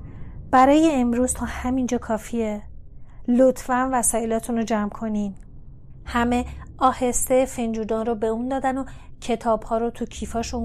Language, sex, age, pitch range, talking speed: Persian, female, 30-49, 225-260 Hz, 125 wpm